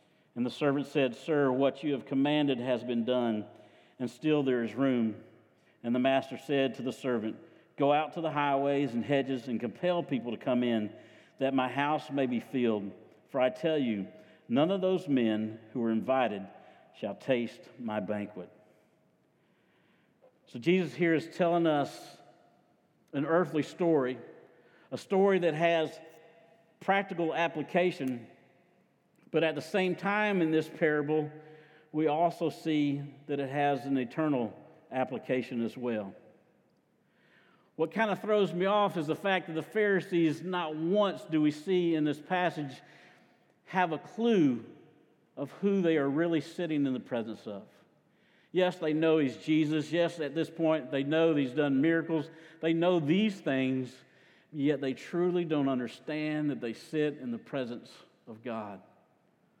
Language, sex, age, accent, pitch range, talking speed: English, male, 50-69, American, 130-165 Hz, 155 wpm